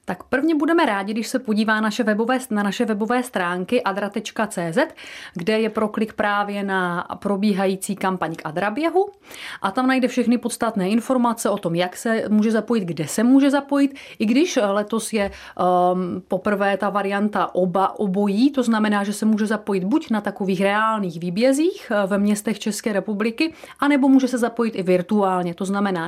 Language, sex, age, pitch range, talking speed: Czech, female, 30-49, 200-245 Hz, 160 wpm